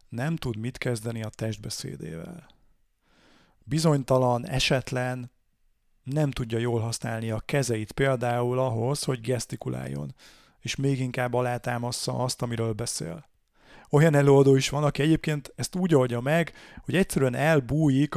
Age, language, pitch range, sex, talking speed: 30-49, Hungarian, 120-145 Hz, male, 125 wpm